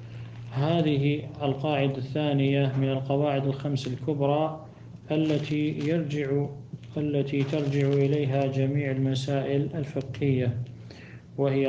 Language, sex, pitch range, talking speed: Arabic, male, 125-145 Hz, 80 wpm